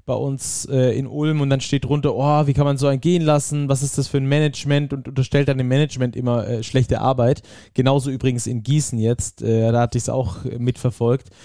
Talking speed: 215 wpm